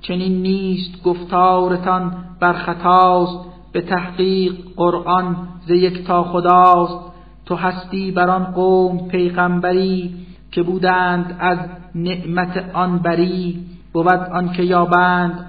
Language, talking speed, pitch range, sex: Persian, 100 wpm, 175-180 Hz, male